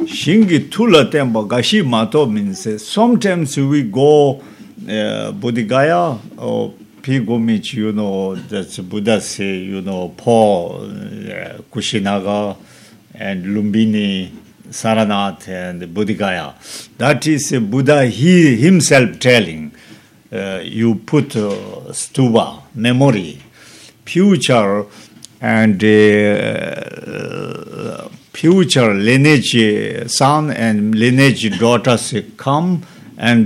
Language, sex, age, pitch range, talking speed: Spanish, male, 50-69, 105-145 Hz, 90 wpm